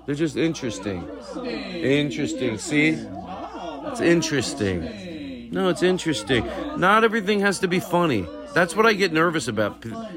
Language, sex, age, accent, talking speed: English, male, 40-59, American, 155 wpm